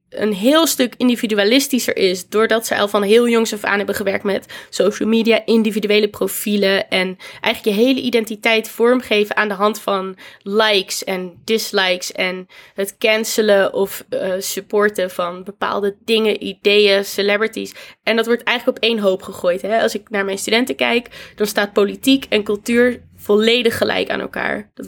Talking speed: 165 wpm